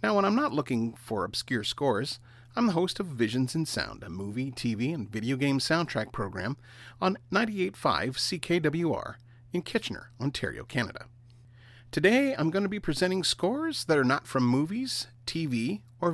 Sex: male